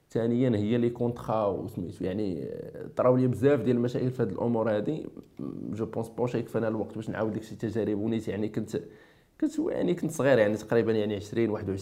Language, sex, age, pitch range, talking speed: French, male, 20-39, 105-125 Hz, 95 wpm